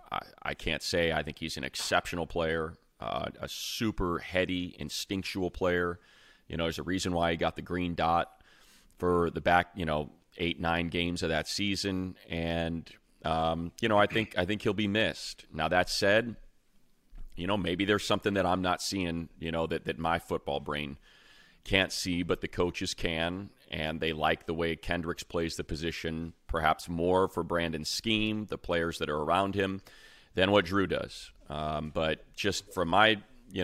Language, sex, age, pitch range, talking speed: English, male, 30-49, 80-95 Hz, 185 wpm